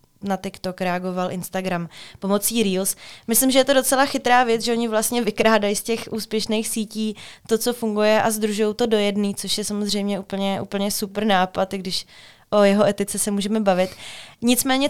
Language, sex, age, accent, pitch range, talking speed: Czech, female, 20-39, native, 195-225 Hz, 175 wpm